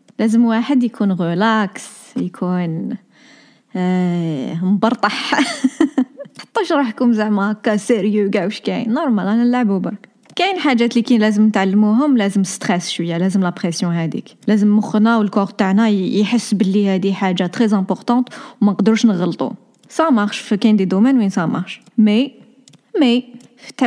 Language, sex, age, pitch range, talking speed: Arabic, female, 20-39, 200-245 Hz, 130 wpm